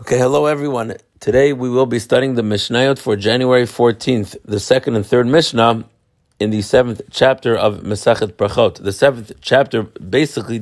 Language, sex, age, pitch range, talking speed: English, male, 50-69, 105-125 Hz, 165 wpm